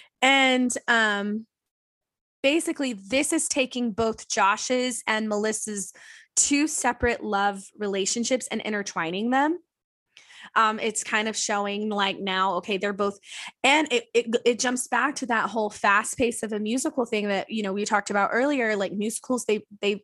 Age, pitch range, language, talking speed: 20-39, 210-280 Hz, English, 160 wpm